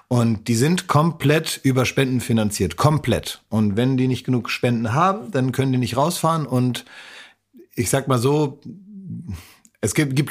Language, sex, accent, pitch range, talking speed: German, male, German, 110-130 Hz, 165 wpm